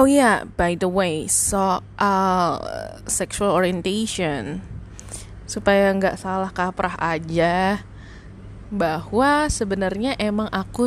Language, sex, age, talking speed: Indonesian, female, 20-39, 105 wpm